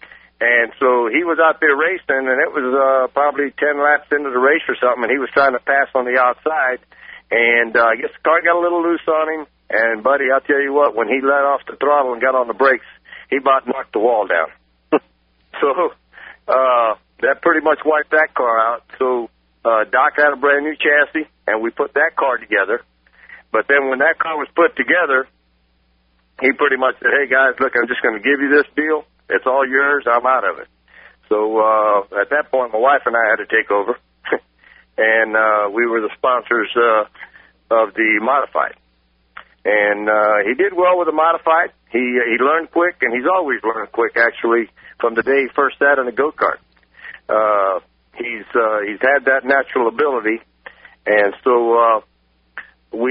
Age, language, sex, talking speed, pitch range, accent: 50-69, English, male, 200 wpm, 110-145 Hz, American